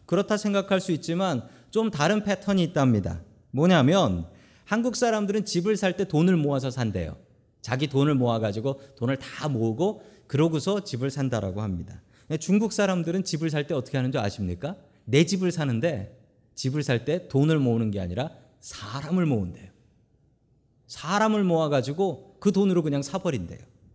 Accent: native